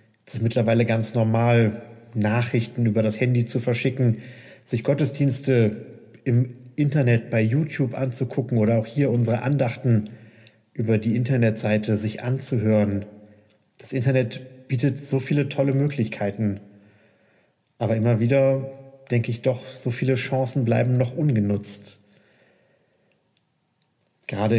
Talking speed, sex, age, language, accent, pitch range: 115 wpm, male, 40-59, German, German, 110-130 Hz